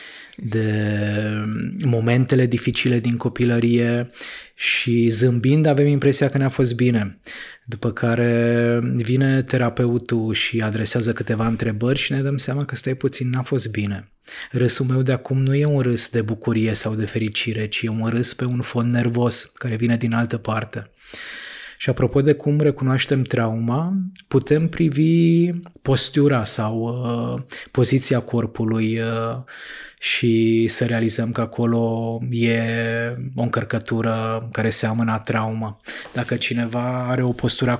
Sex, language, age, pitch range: male, Romanian, 20-39, 115-130 Hz